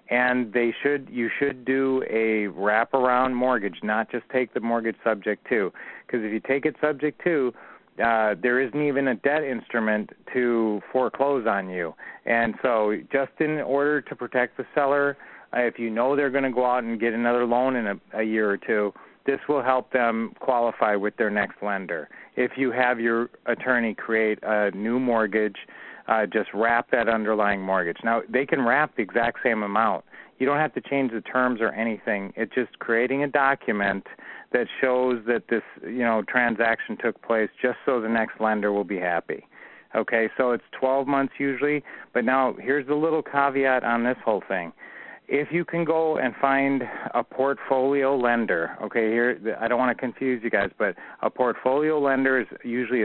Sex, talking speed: male, 190 wpm